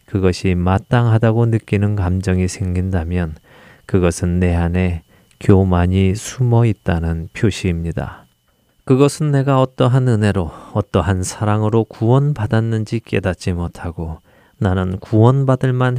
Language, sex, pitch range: Korean, male, 90-120 Hz